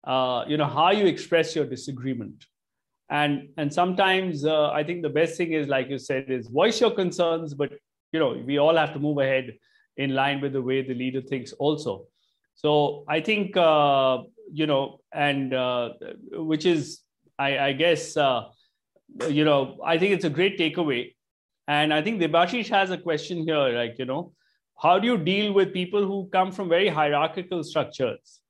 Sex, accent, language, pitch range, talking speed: male, Indian, English, 140-185 Hz, 185 wpm